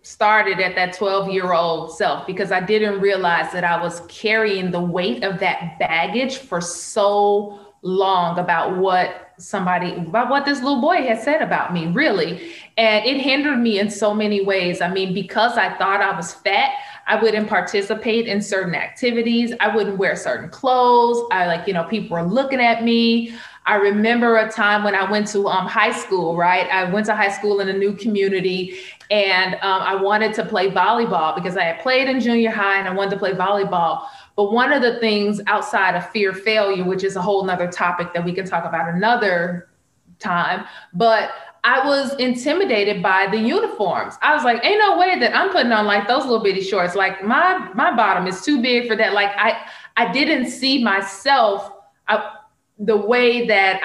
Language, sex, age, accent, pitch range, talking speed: English, female, 30-49, American, 185-230 Hz, 195 wpm